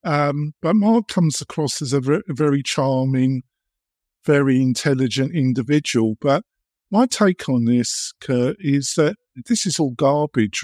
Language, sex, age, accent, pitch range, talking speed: English, male, 50-69, British, 125-170 Hz, 135 wpm